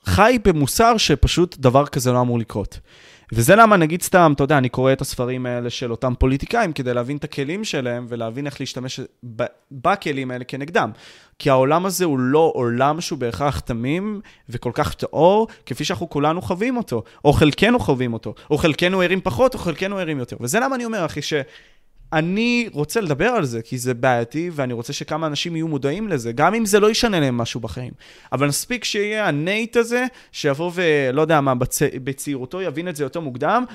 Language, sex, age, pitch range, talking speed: Hebrew, male, 20-39, 130-180 Hz, 190 wpm